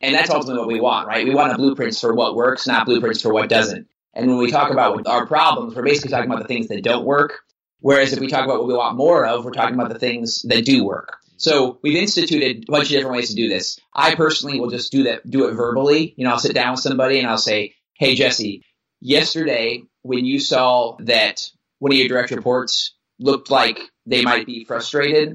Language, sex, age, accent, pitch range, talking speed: English, male, 30-49, American, 120-145 Hz, 240 wpm